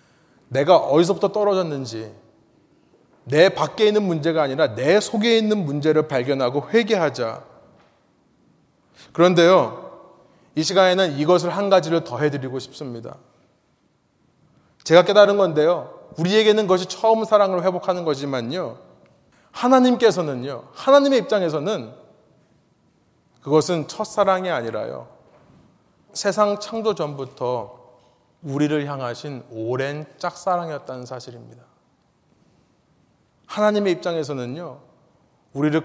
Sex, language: male, Korean